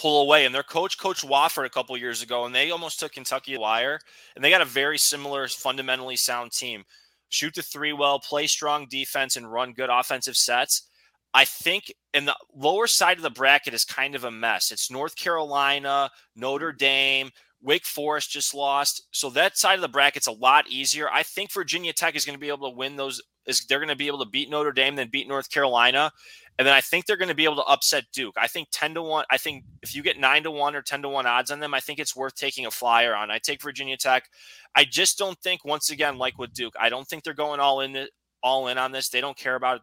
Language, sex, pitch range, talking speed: English, male, 125-145 Hz, 245 wpm